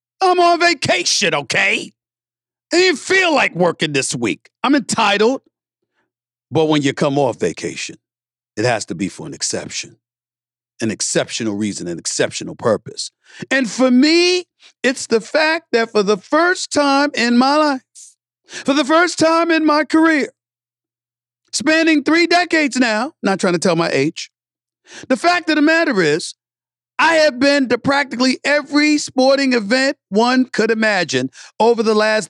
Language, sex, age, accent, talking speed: English, male, 50-69, American, 155 wpm